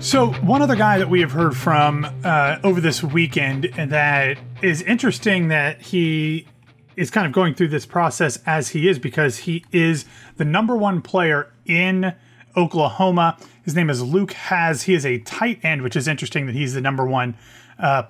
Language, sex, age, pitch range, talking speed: English, male, 30-49, 140-180 Hz, 185 wpm